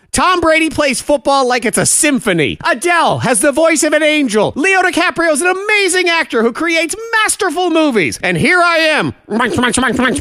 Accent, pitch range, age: American, 200-290 Hz, 40-59